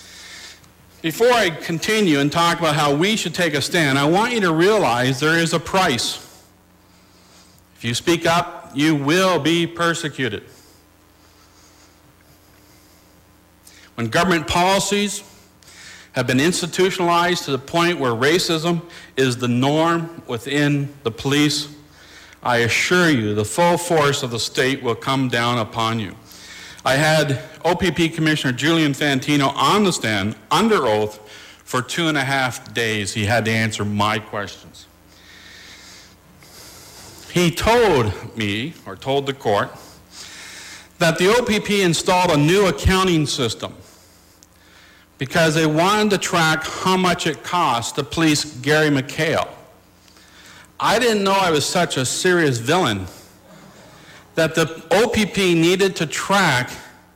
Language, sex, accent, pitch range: English, male, American, 110-170 Hz